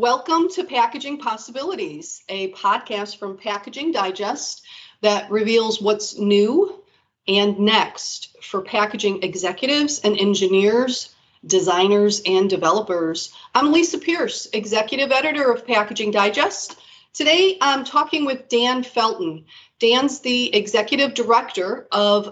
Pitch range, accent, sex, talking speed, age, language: 205-285 Hz, American, female, 115 wpm, 40-59, English